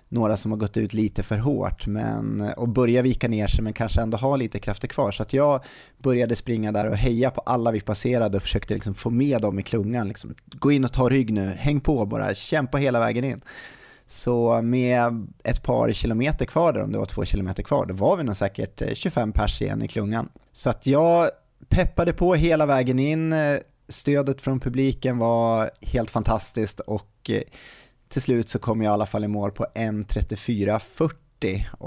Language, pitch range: Swedish, 105-130 Hz